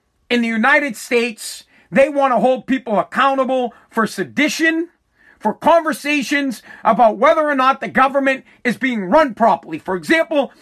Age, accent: 40-59, American